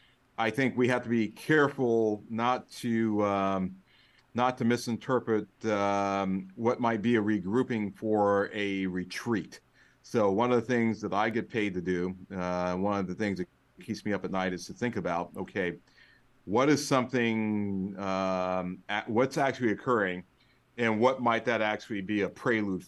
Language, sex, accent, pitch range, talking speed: English, male, American, 95-115 Hz, 170 wpm